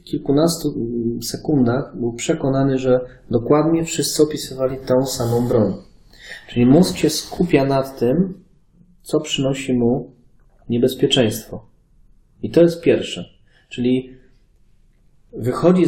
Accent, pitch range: native, 115-140 Hz